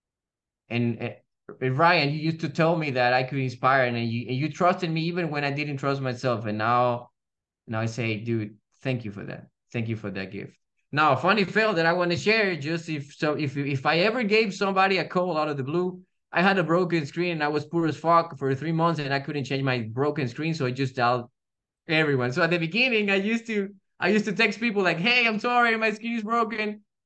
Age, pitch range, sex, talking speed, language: 20-39, 130-200 Hz, male, 235 wpm, English